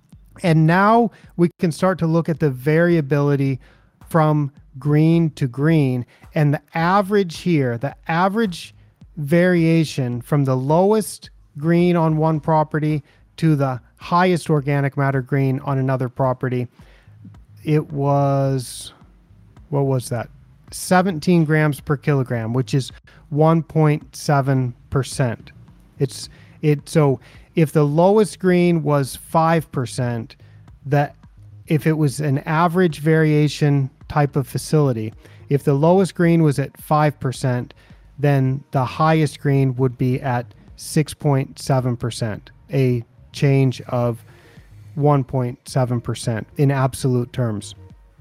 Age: 30-49